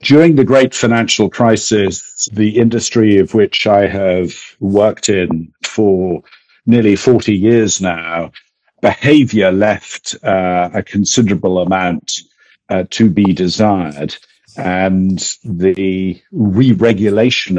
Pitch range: 90-110 Hz